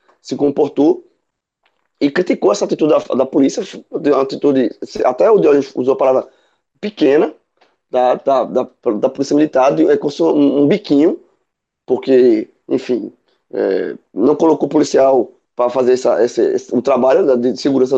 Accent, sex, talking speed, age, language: Brazilian, male, 150 wpm, 20-39, Portuguese